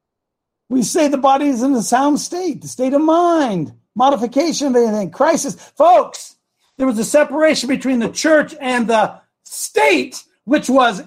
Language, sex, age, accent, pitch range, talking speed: English, male, 60-79, American, 190-255 Hz, 165 wpm